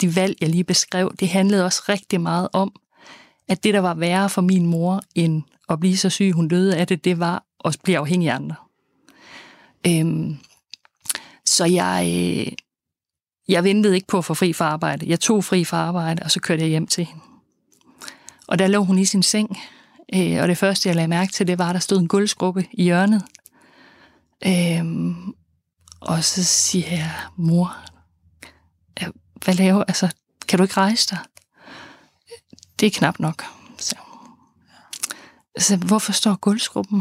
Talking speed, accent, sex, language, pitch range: 175 wpm, native, female, Danish, 165-195 Hz